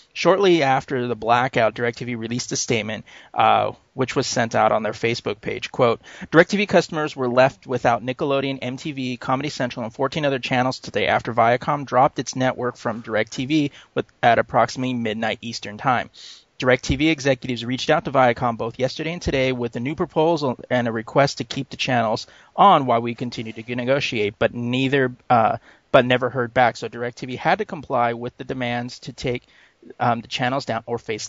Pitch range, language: 120-145 Hz, English